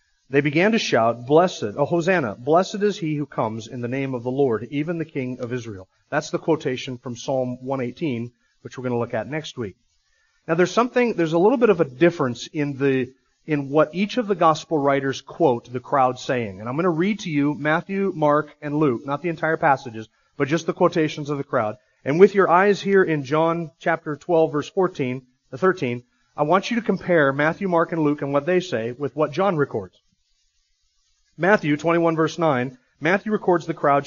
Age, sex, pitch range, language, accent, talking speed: 40-59, male, 135-180 Hz, English, American, 210 wpm